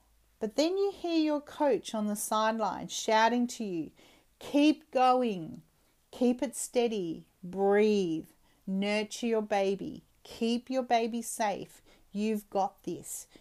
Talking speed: 125 wpm